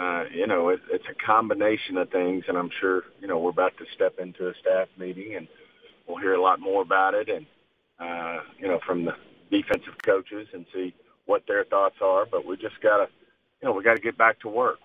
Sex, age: male, 40-59